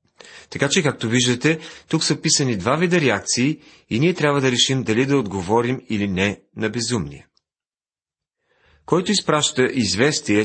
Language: Bulgarian